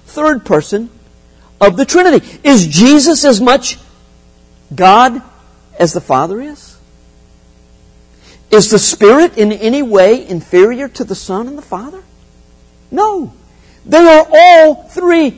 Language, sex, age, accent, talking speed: English, male, 50-69, American, 125 wpm